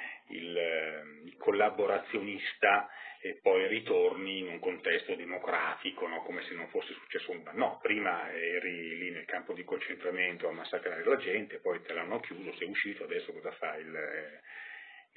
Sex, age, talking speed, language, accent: male, 40-59, 160 wpm, Italian, native